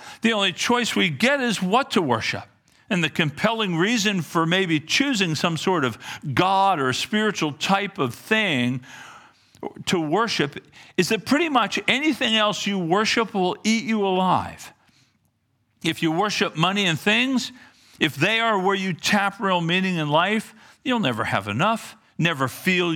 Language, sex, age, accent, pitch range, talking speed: English, male, 50-69, American, 125-200 Hz, 160 wpm